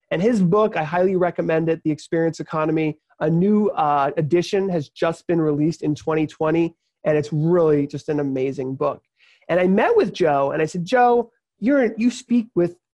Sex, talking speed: male, 190 wpm